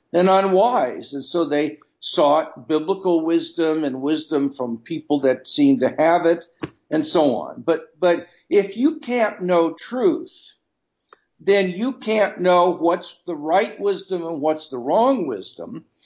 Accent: American